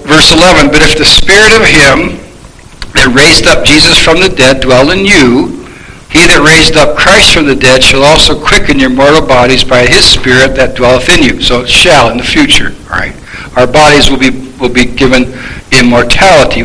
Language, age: English, 60-79